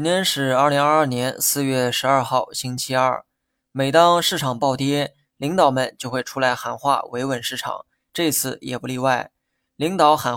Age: 20-39